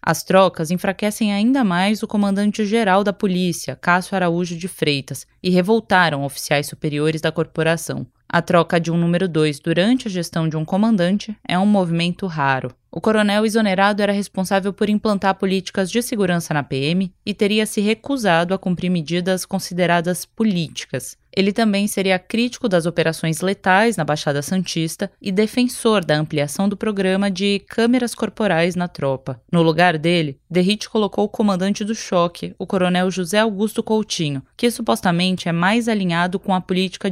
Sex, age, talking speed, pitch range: female, 20-39, 160 wpm, 165-210 Hz